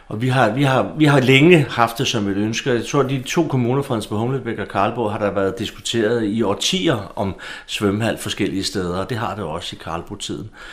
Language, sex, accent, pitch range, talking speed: Danish, male, native, 95-130 Hz, 220 wpm